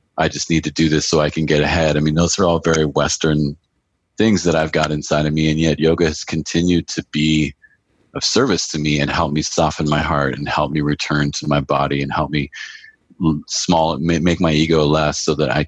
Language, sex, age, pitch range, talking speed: English, male, 30-49, 75-85 Hz, 230 wpm